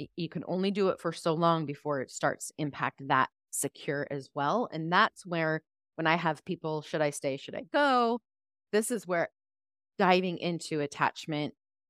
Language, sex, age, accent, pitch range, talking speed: English, female, 30-49, American, 145-190 Hz, 175 wpm